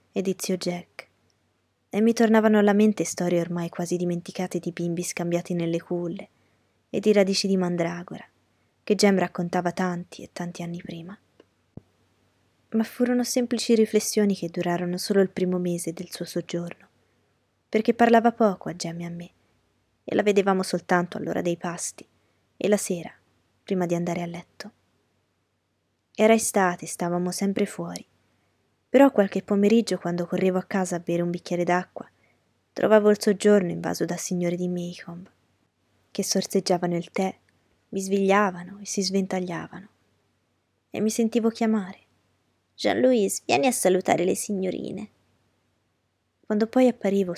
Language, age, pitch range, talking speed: Italian, 20-39, 170-200 Hz, 145 wpm